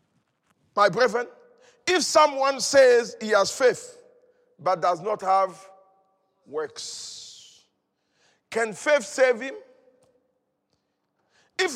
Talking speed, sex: 90 wpm, male